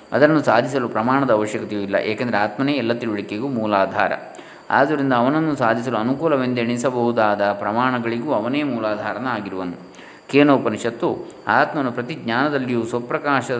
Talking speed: 95 wpm